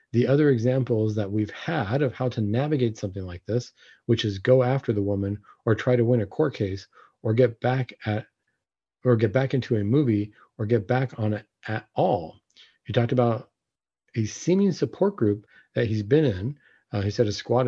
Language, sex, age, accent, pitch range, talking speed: English, male, 40-59, American, 105-135 Hz, 200 wpm